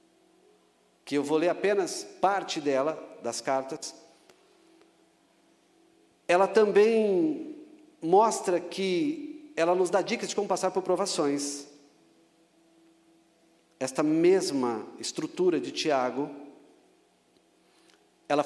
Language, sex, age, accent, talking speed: Portuguese, male, 50-69, Brazilian, 90 wpm